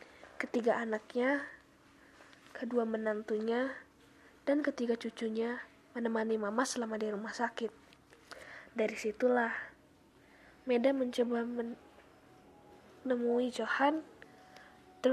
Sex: female